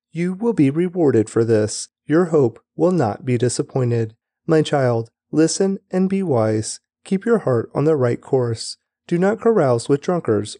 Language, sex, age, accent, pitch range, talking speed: English, male, 30-49, American, 120-185 Hz, 170 wpm